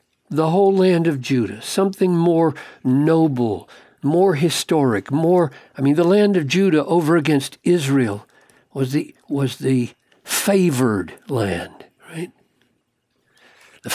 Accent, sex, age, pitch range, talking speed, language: American, male, 60-79, 135-190 Hz, 120 wpm, English